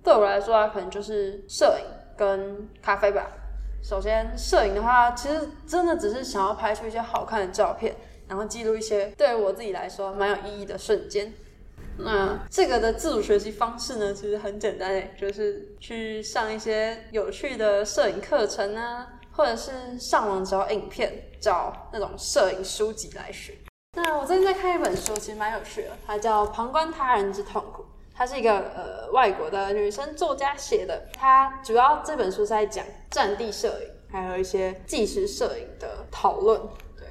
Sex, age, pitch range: female, 20-39, 205-265 Hz